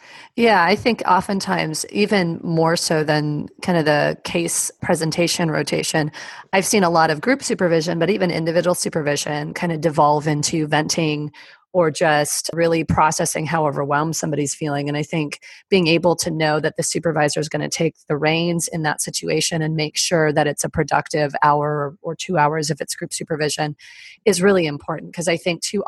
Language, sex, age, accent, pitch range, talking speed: English, female, 30-49, American, 150-180 Hz, 185 wpm